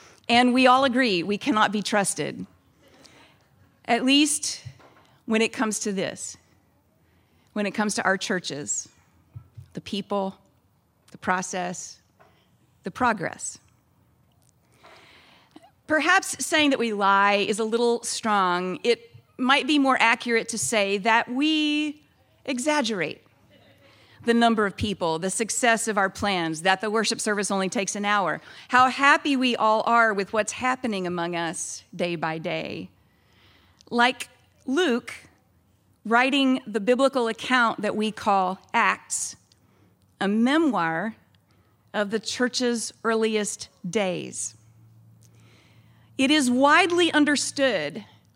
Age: 40-59